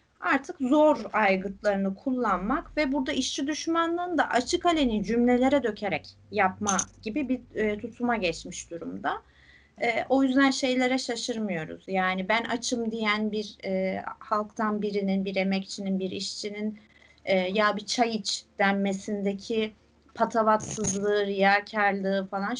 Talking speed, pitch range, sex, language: 110 wpm, 200-275 Hz, female, Turkish